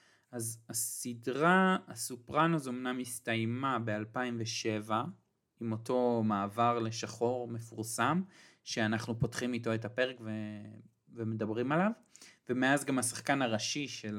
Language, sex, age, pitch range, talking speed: Hebrew, male, 30-49, 115-135 Hz, 100 wpm